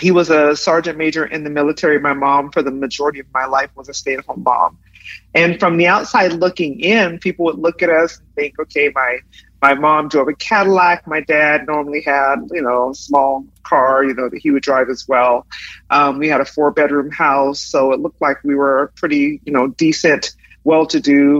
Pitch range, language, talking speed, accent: 140-165 Hz, English, 210 wpm, American